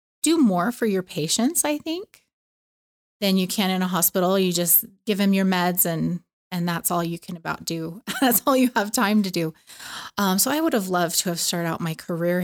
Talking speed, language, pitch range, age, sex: 220 wpm, English, 170-210 Hz, 20-39, female